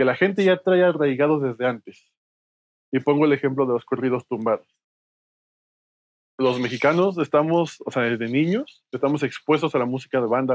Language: Spanish